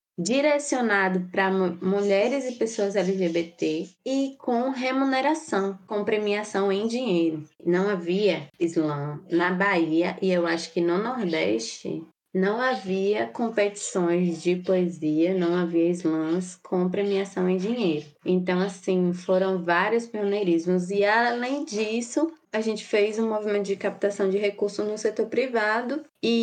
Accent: Brazilian